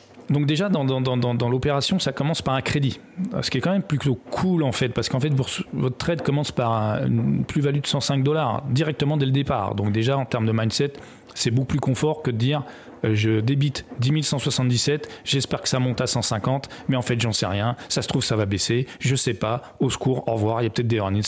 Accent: French